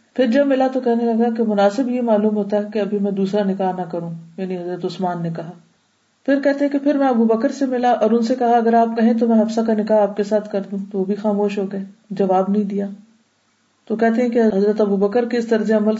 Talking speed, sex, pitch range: 260 wpm, female, 195-230 Hz